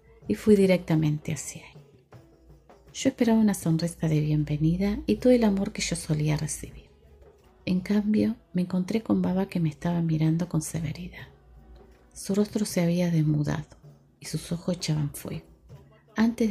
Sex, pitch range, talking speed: female, 145-185 Hz, 155 wpm